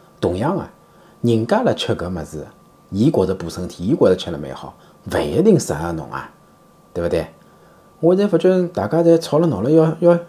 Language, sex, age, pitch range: Chinese, male, 30-49, 100-155 Hz